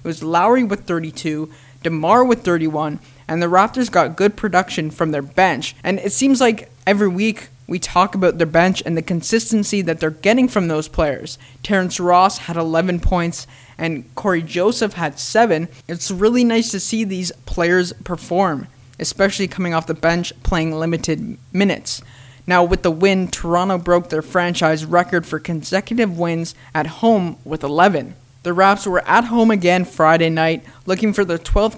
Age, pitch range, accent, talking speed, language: 20-39, 160-195 Hz, American, 170 wpm, English